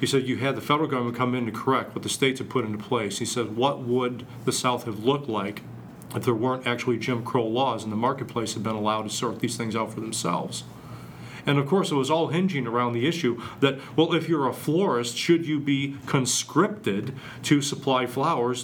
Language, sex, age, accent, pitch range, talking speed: English, male, 40-59, American, 120-145 Hz, 225 wpm